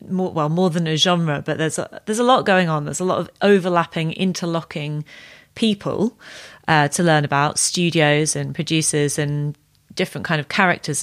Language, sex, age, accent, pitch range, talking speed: English, female, 30-49, British, 150-185 Hz, 180 wpm